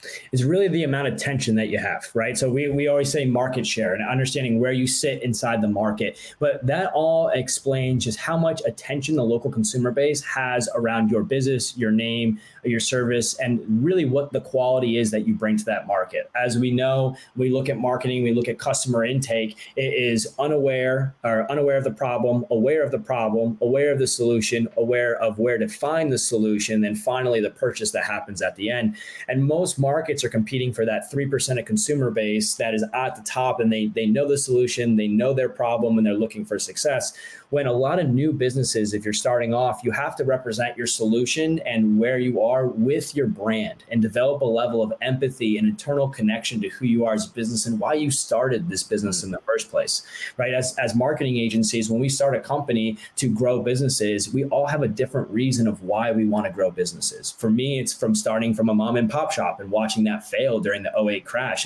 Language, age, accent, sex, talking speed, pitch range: English, 20-39, American, male, 220 wpm, 115-135 Hz